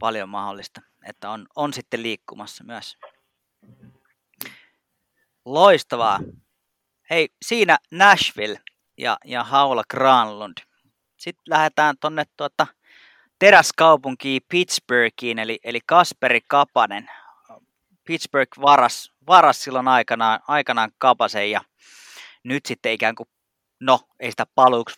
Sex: male